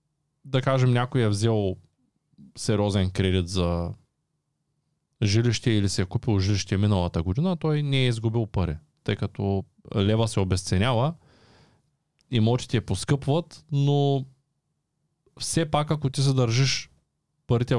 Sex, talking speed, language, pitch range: male, 120 wpm, Bulgarian, 105-140 Hz